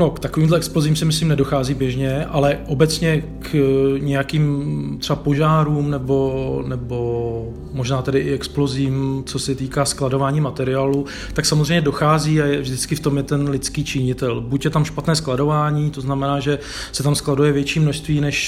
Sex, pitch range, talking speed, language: male, 130-145 Hz, 165 wpm, Czech